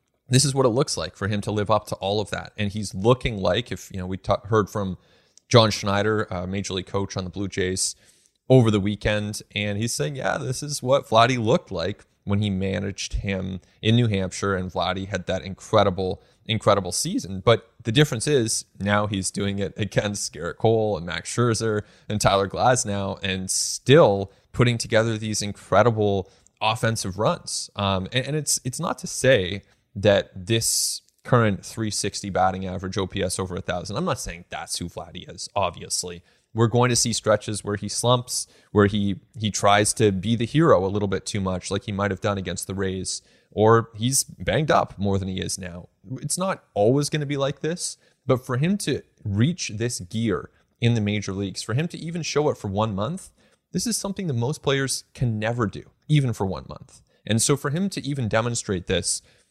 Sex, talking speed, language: male, 200 wpm, English